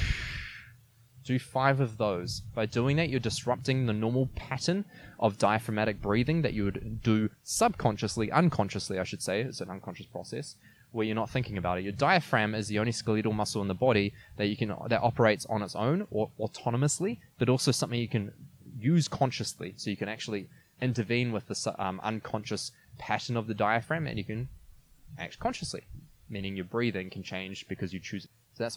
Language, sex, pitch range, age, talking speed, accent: English, male, 105-130 Hz, 20-39, 190 wpm, Australian